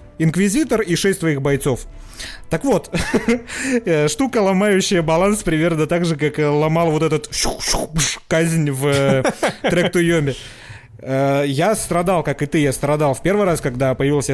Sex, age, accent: male, 30-49, native